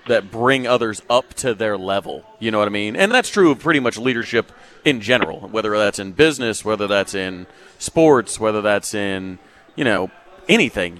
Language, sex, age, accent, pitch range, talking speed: English, male, 30-49, American, 105-130 Hz, 190 wpm